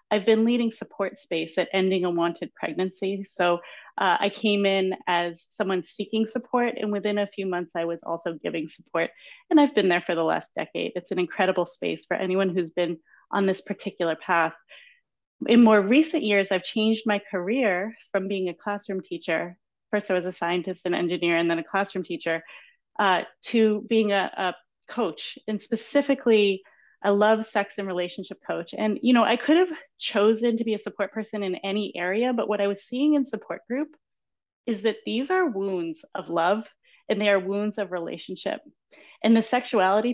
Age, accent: 30-49, American